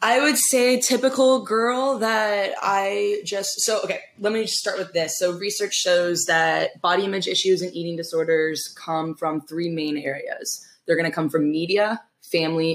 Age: 10-29